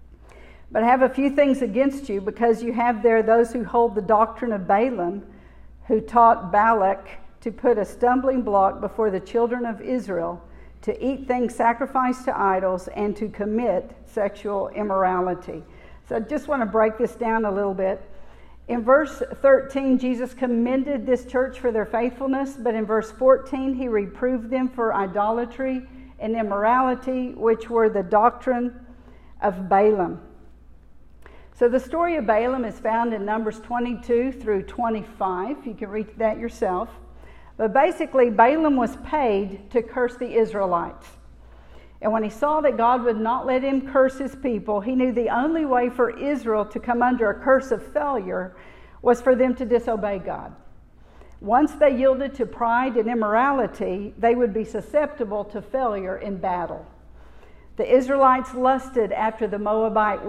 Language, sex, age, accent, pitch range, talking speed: English, female, 50-69, American, 210-255 Hz, 160 wpm